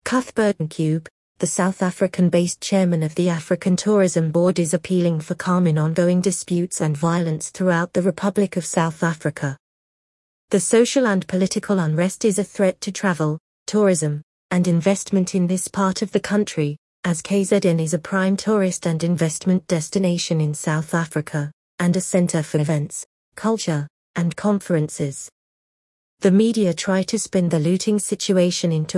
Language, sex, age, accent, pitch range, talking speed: English, female, 40-59, British, 165-195 Hz, 155 wpm